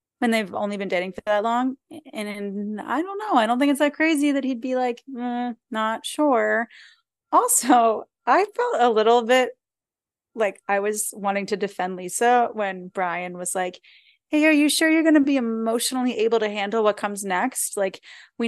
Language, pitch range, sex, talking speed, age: English, 210-295 Hz, female, 195 wpm, 20-39